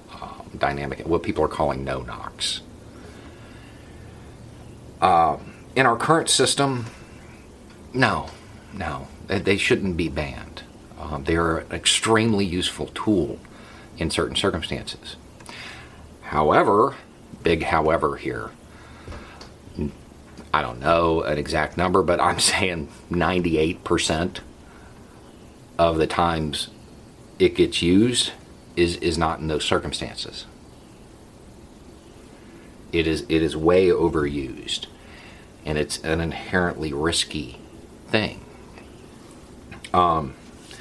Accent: American